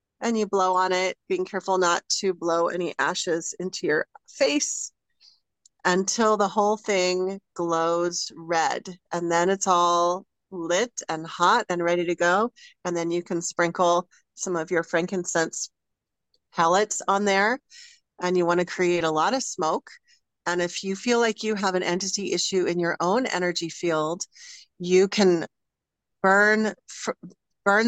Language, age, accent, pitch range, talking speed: English, 40-59, American, 175-205 Hz, 155 wpm